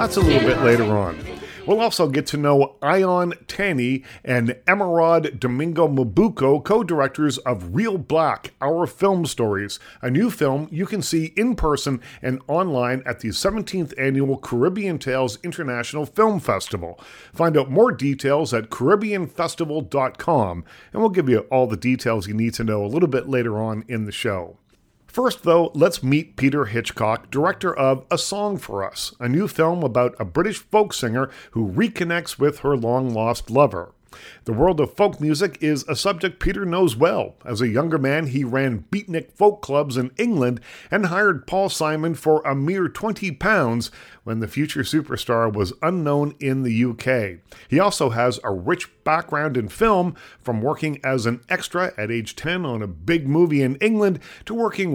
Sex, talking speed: male, 175 wpm